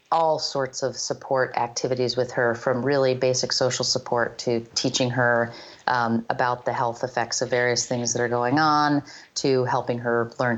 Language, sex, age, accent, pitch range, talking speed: English, female, 30-49, American, 120-145 Hz, 175 wpm